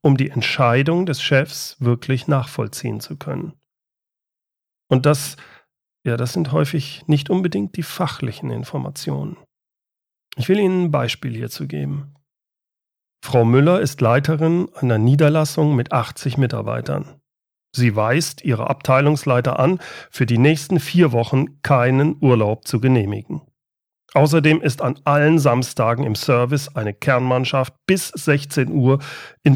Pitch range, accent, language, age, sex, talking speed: 125-155 Hz, German, German, 40-59, male, 130 wpm